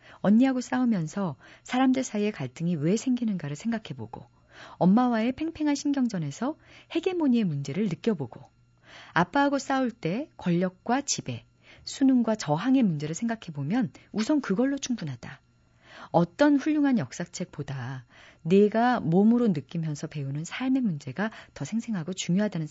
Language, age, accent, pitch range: Korean, 40-59, native, 145-230 Hz